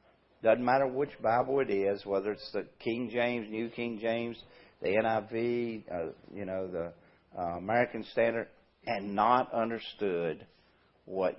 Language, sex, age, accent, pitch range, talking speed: English, male, 50-69, American, 90-120 Hz, 140 wpm